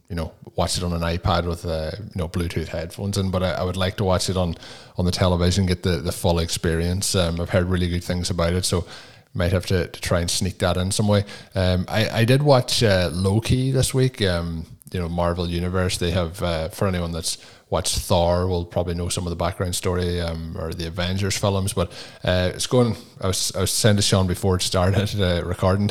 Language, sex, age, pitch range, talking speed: English, male, 20-39, 90-100 Hz, 235 wpm